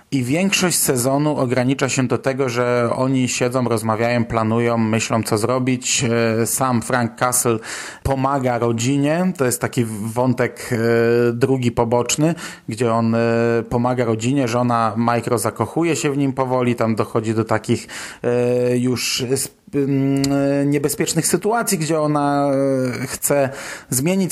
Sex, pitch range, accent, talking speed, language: male, 120-140 Hz, native, 115 wpm, Polish